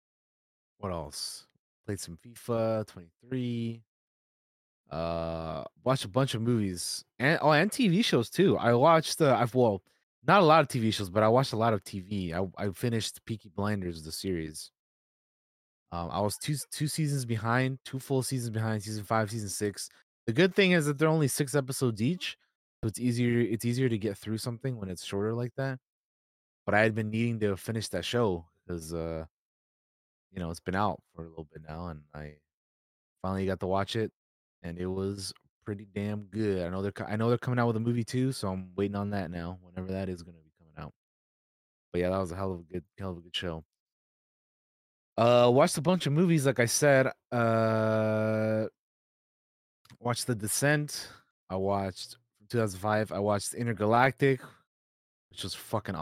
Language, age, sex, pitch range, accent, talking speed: English, 20-39, male, 95-120 Hz, American, 190 wpm